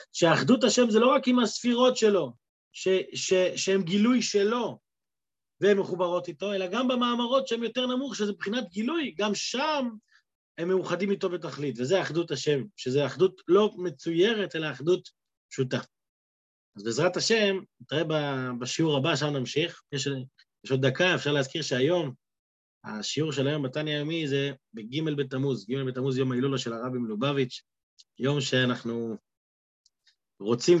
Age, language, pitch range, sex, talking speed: 20-39, Hebrew, 130-175 Hz, male, 135 wpm